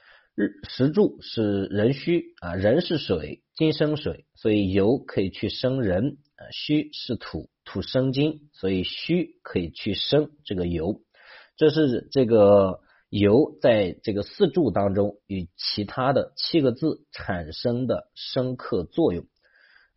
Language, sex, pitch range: Chinese, male, 100-140 Hz